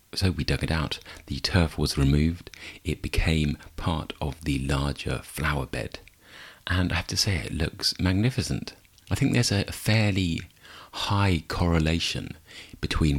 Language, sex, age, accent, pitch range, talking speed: English, male, 40-59, British, 75-90 Hz, 150 wpm